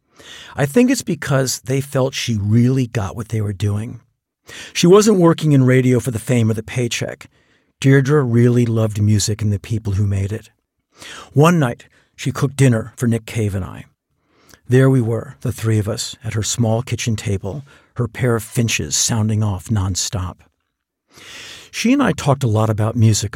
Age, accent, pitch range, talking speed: 50-69, American, 110-135 Hz, 180 wpm